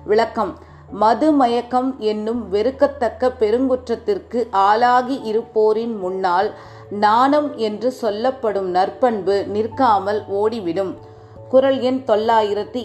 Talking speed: 85 wpm